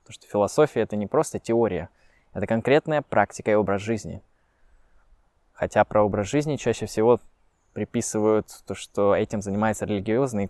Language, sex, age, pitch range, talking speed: Russian, male, 20-39, 100-135 Hz, 145 wpm